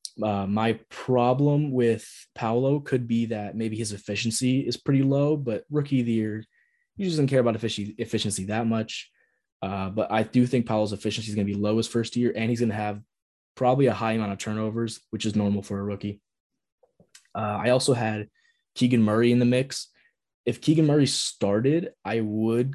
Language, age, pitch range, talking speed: English, 20-39, 105-120 Hz, 200 wpm